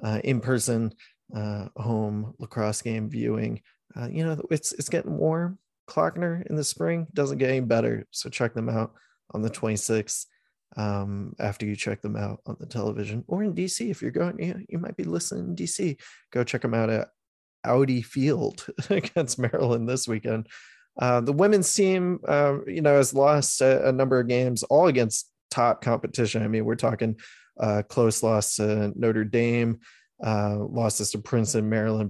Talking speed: 180 wpm